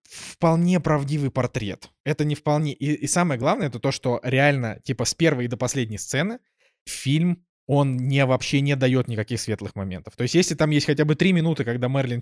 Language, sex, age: Russian, male, 20-39